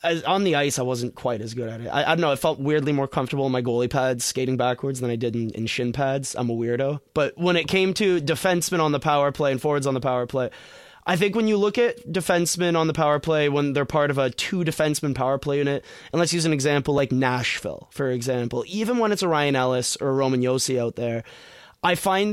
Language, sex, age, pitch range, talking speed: English, male, 20-39, 135-175 Hz, 255 wpm